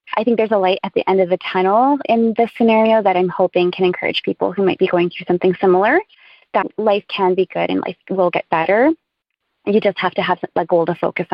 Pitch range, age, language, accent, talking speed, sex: 185-230 Hz, 20-39, English, American, 245 wpm, female